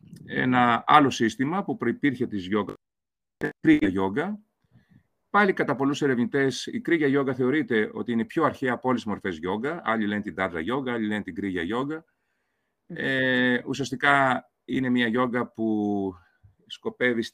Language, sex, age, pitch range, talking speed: Greek, male, 40-59, 105-135 Hz, 150 wpm